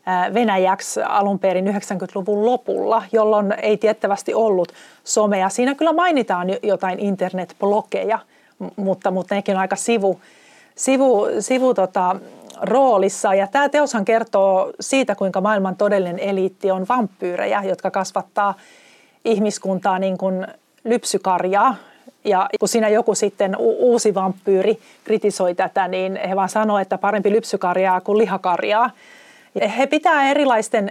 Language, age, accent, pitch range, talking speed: Finnish, 30-49, native, 190-220 Hz, 120 wpm